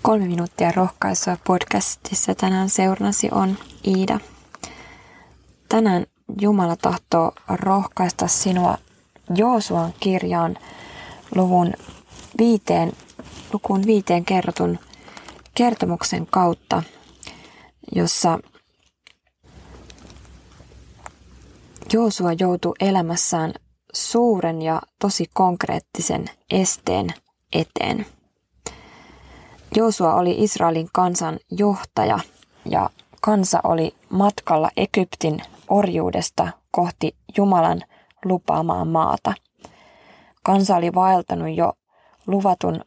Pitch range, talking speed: 170-205 Hz, 75 wpm